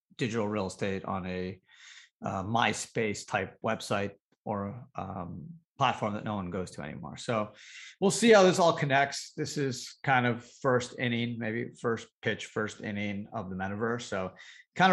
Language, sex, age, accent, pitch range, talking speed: English, male, 30-49, American, 100-130 Hz, 165 wpm